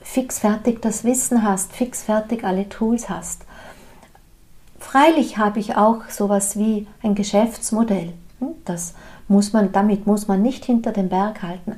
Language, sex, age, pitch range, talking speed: German, female, 50-69, 200-240 Hz, 140 wpm